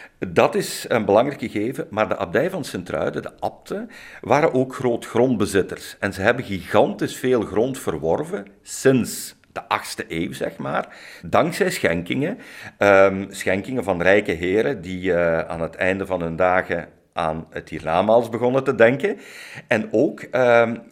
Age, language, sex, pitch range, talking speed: 50-69, Dutch, male, 90-120 Hz, 150 wpm